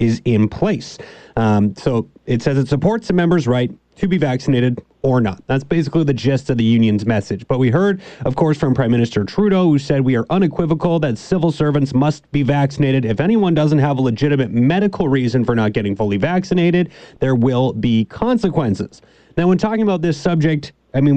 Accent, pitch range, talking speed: American, 125-165 Hz, 200 wpm